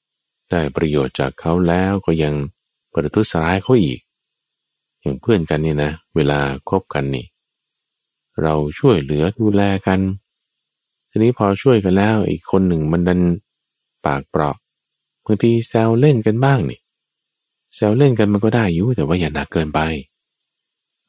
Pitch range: 75-105 Hz